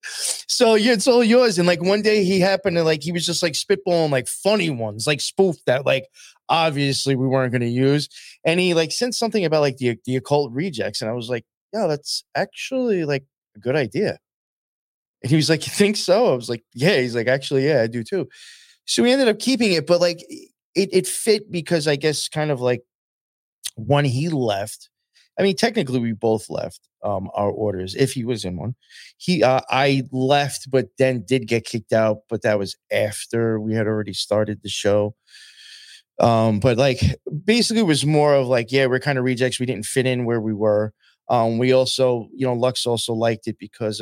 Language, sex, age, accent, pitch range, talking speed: English, male, 20-39, American, 110-170 Hz, 210 wpm